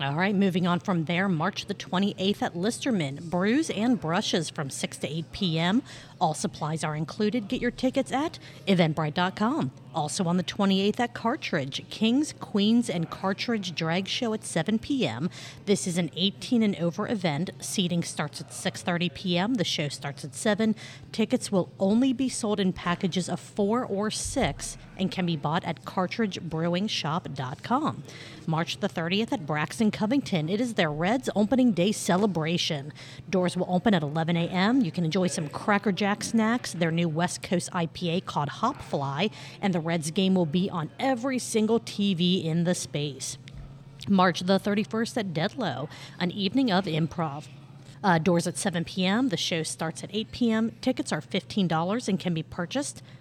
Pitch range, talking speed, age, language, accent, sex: 160-210 Hz, 170 wpm, 40-59, English, American, female